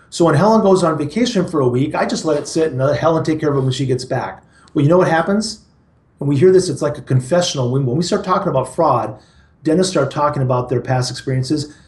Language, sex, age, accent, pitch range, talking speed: English, male, 40-59, American, 125-165 Hz, 260 wpm